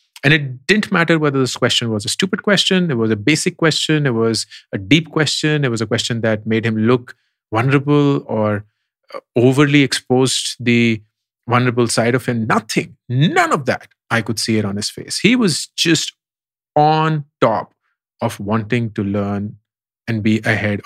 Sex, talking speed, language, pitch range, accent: male, 175 wpm, English, 110-140 Hz, Indian